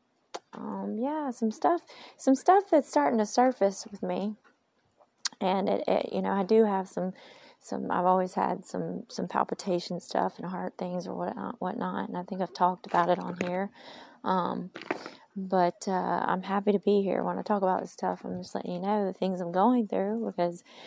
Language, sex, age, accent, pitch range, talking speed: English, female, 30-49, American, 180-215 Hz, 195 wpm